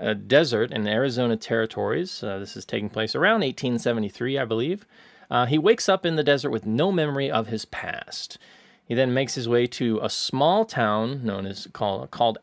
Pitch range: 110-145 Hz